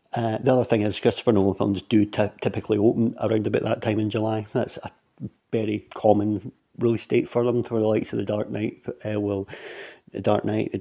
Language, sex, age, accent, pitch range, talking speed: English, male, 40-59, British, 105-115 Hz, 215 wpm